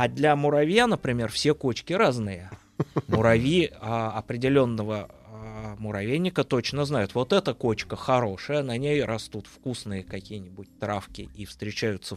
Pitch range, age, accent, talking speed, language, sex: 105-145 Hz, 20-39, native, 120 wpm, Russian, male